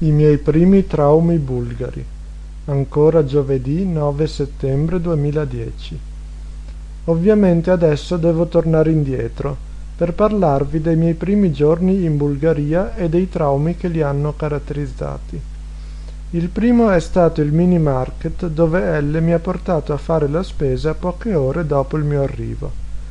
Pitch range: 140-180 Hz